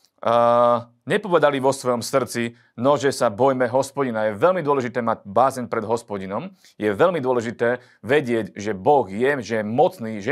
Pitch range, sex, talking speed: 115-145 Hz, male, 165 wpm